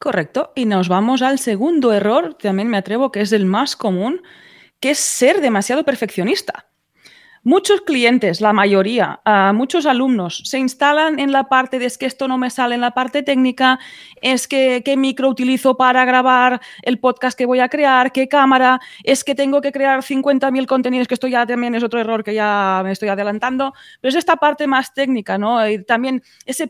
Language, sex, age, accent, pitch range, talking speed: Spanish, female, 20-39, Spanish, 235-275 Hz, 195 wpm